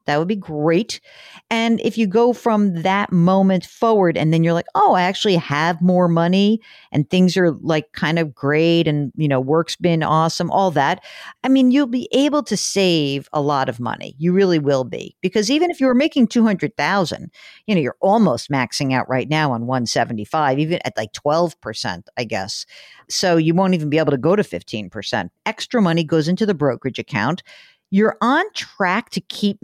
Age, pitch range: 50-69, 155-220 Hz